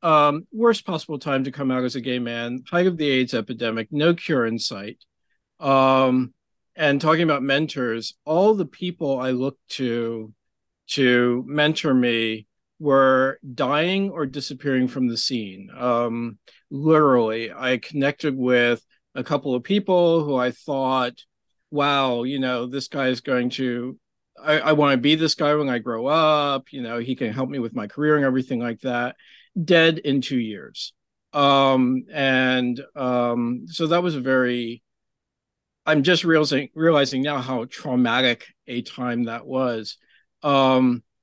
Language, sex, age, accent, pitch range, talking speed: English, male, 40-59, American, 125-150 Hz, 155 wpm